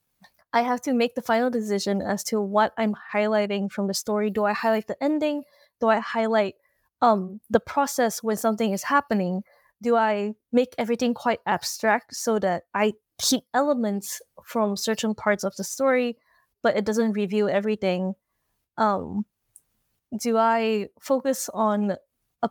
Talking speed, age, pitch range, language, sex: 155 wpm, 20-39, 210-280 Hz, English, female